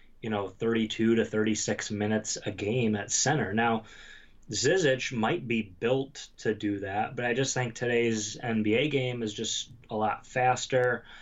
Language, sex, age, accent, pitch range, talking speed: English, male, 20-39, American, 105-120 Hz, 160 wpm